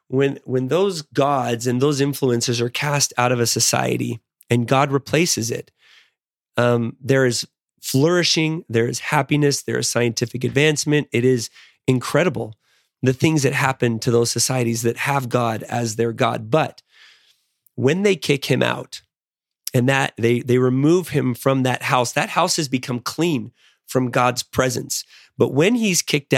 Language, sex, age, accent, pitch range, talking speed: English, male, 30-49, American, 120-145 Hz, 160 wpm